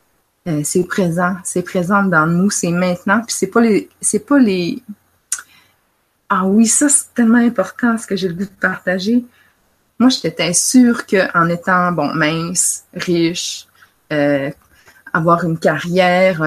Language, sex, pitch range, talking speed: French, female, 170-210 Hz, 150 wpm